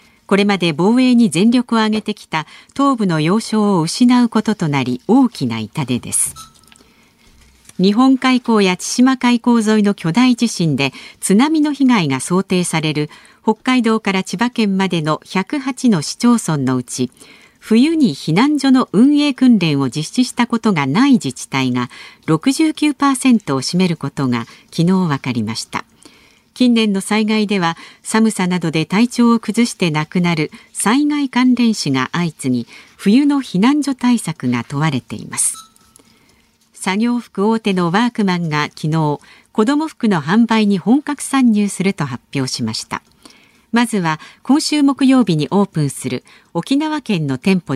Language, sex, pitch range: Japanese, female, 155-240 Hz